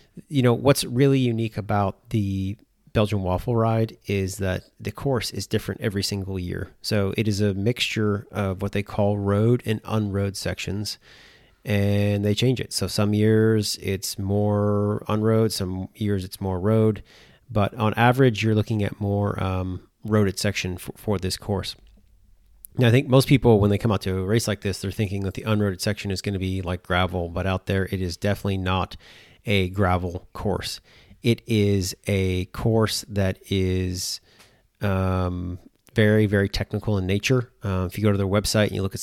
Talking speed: 185 wpm